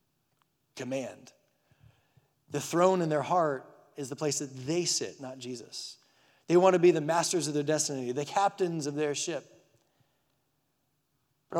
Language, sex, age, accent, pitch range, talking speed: English, male, 30-49, American, 135-165 Hz, 150 wpm